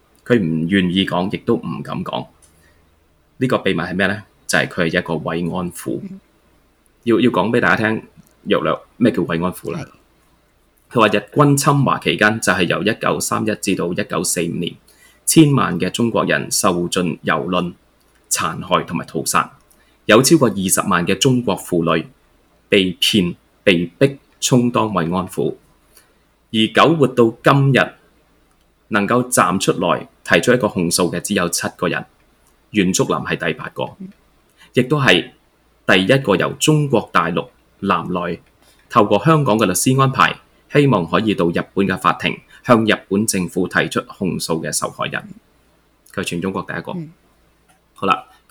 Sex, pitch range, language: male, 85-125 Hz, Chinese